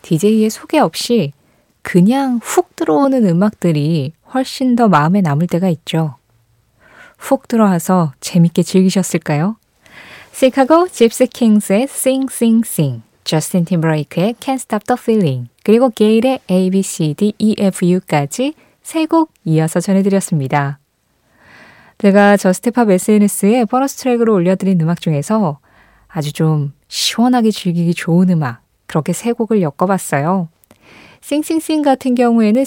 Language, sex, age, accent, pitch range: Korean, female, 20-39, native, 170-230 Hz